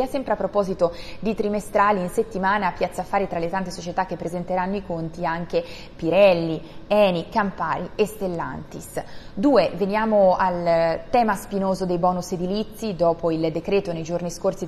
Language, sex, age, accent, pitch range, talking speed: Italian, female, 20-39, native, 170-195 Hz, 155 wpm